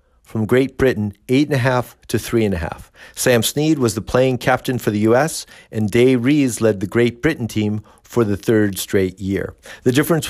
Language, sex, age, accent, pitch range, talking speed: English, male, 50-69, American, 105-135 Hz, 210 wpm